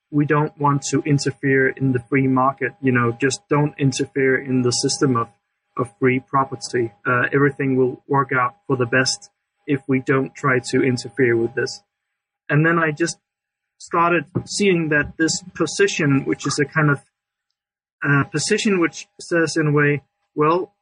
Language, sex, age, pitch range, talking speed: English, male, 30-49, 130-155 Hz, 170 wpm